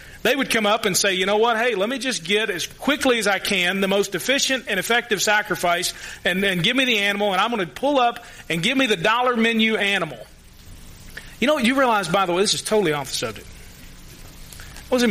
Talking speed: 240 wpm